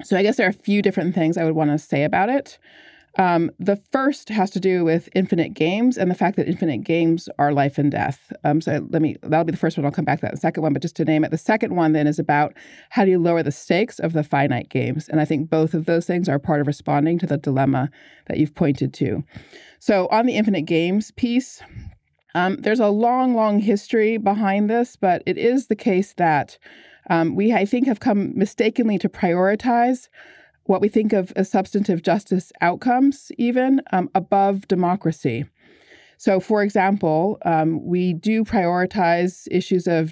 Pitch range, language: 160-205 Hz, English